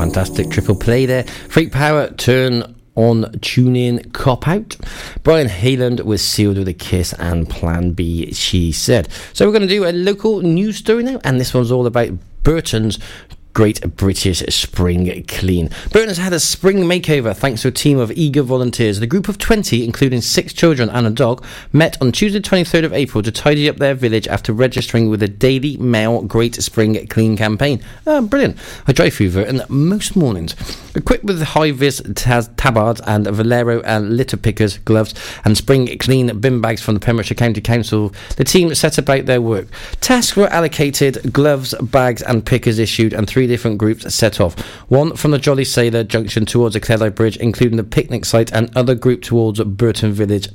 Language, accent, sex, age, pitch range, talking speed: English, British, male, 30-49, 110-140 Hz, 185 wpm